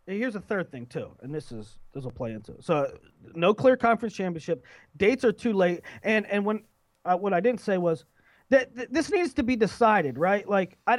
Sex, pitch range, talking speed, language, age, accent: male, 185-255 Hz, 225 wpm, English, 30-49, American